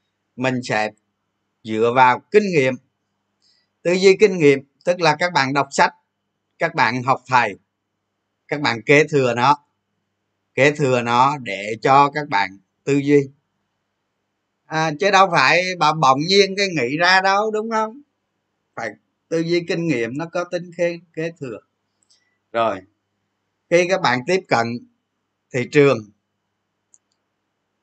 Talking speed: 140 wpm